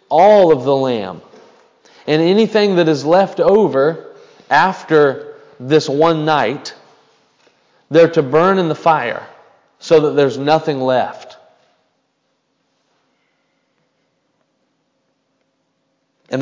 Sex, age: male, 40-59